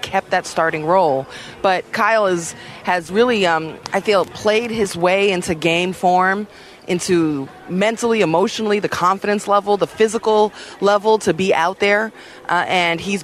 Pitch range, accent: 175-210 Hz, American